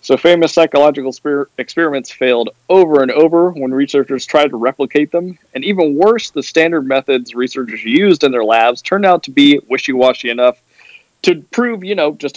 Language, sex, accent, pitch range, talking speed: English, male, American, 120-155 Hz, 175 wpm